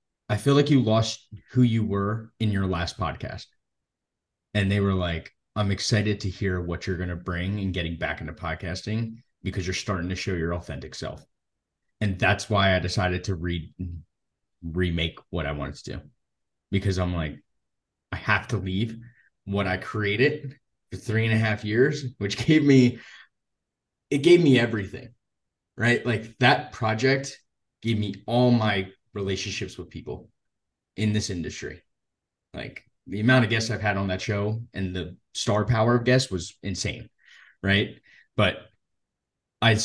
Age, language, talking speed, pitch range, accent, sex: 20-39, English, 165 wpm, 95-120 Hz, American, male